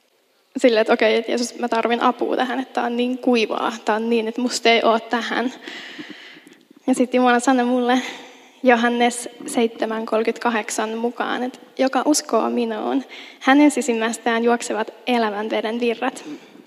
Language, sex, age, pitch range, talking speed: Finnish, female, 10-29, 235-300 Hz, 145 wpm